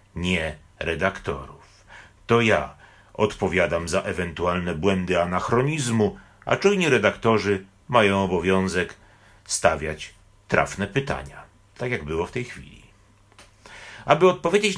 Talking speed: 100 wpm